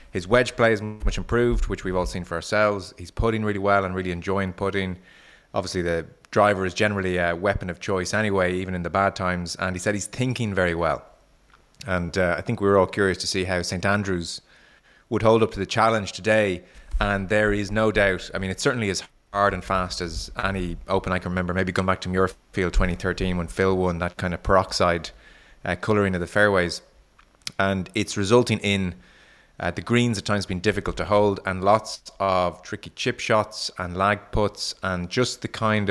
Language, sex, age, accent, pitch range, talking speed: English, male, 20-39, Irish, 90-105 Hz, 210 wpm